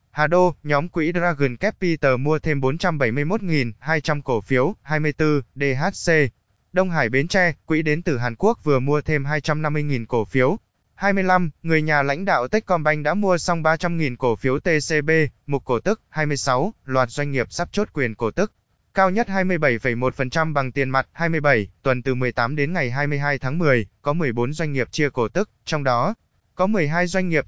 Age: 20-39